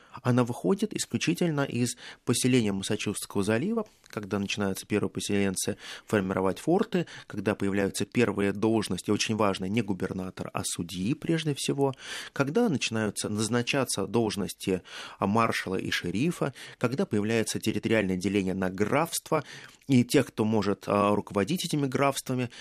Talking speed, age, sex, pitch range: 120 wpm, 20-39, male, 105-150 Hz